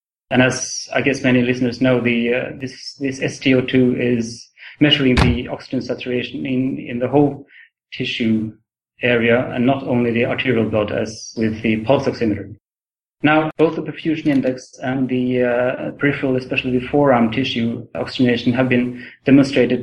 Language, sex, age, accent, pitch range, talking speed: English, male, 30-49, Norwegian, 115-130 Hz, 150 wpm